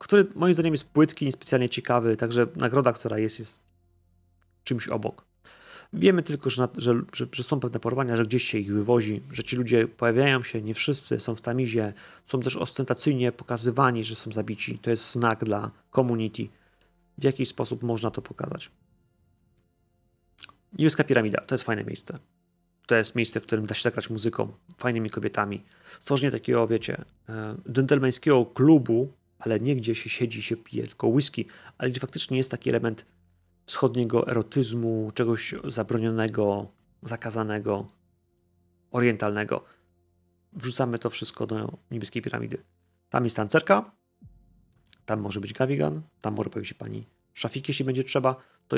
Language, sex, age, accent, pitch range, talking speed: Polish, male, 30-49, native, 105-130 Hz, 150 wpm